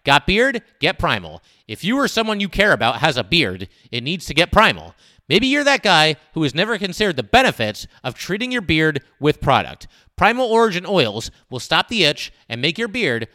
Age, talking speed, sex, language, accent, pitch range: 30-49, 205 wpm, male, English, American, 125-200 Hz